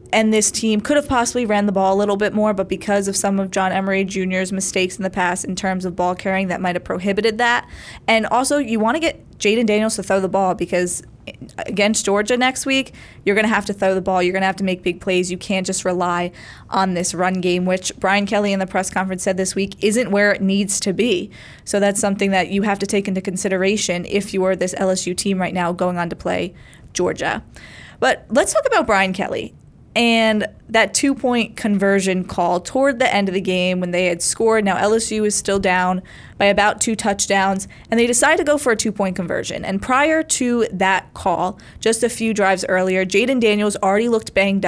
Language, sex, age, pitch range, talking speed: English, female, 20-39, 190-220 Hz, 225 wpm